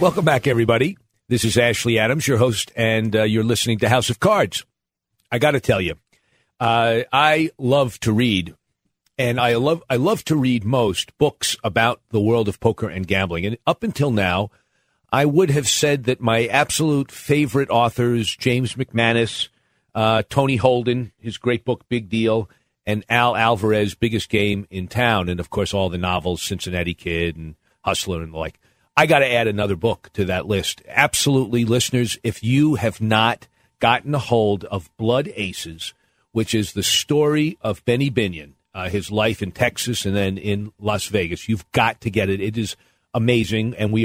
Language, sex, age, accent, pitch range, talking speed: English, male, 50-69, American, 105-125 Hz, 185 wpm